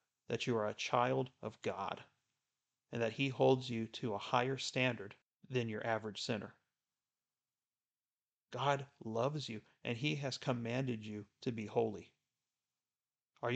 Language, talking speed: English, 140 wpm